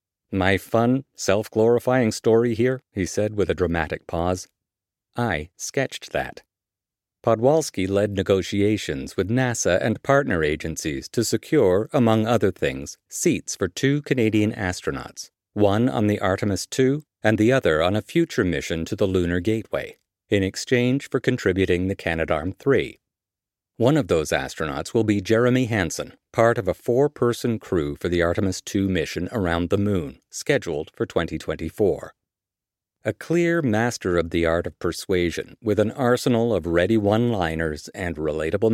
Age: 50-69